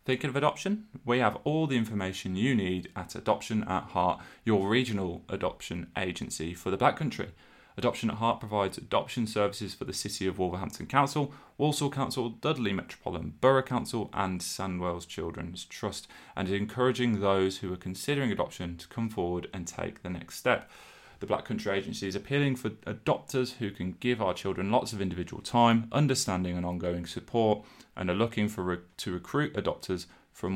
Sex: male